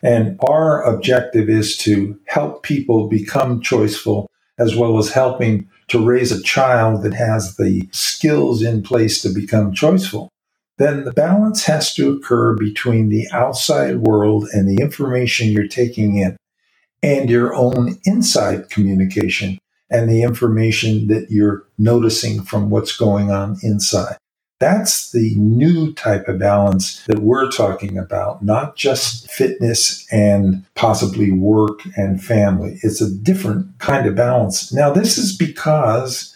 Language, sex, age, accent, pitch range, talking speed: English, male, 50-69, American, 105-135 Hz, 140 wpm